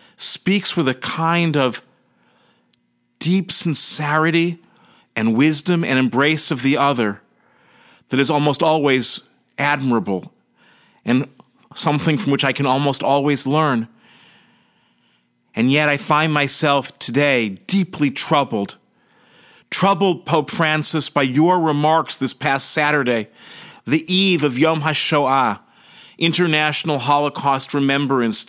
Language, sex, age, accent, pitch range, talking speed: English, male, 40-59, American, 125-160 Hz, 110 wpm